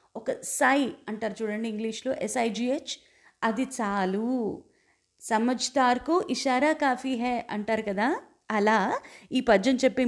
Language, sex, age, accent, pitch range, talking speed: Telugu, female, 20-39, native, 205-280 Hz, 115 wpm